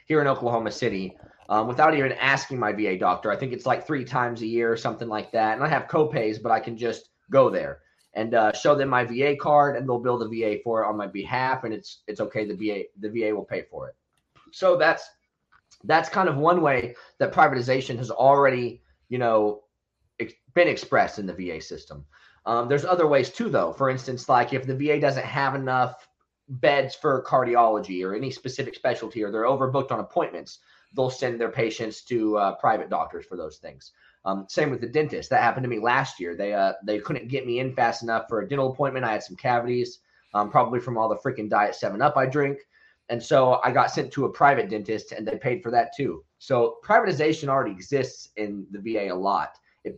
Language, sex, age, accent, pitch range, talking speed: English, male, 20-39, American, 110-140 Hz, 220 wpm